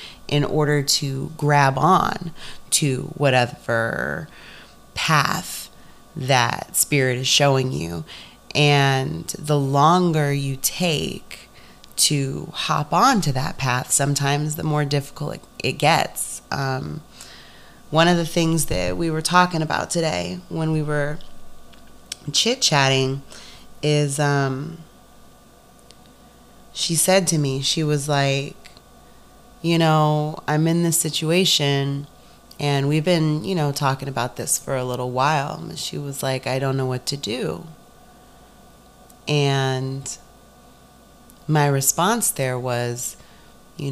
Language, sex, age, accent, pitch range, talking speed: English, female, 30-49, American, 130-155 Hz, 120 wpm